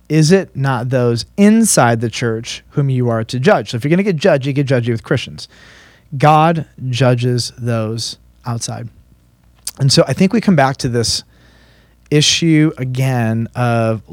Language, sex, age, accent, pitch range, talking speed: English, male, 30-49, American, 115-140 Hz, 170 wpm